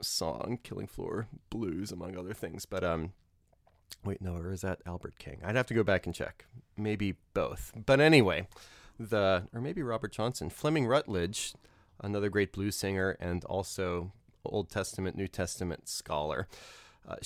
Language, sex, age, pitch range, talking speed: English, male, 30-49, 90-115 Hz, 160 wpm